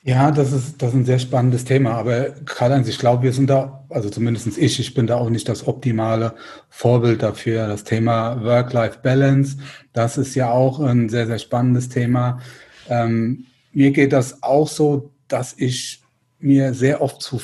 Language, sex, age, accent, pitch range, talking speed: German, male, 30-49, German, 125-145 Hz, 180 wpm